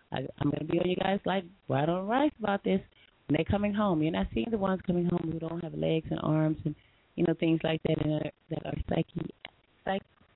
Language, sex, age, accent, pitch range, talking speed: English, female, 30-49, American, 150-175 Hz, 250 wpm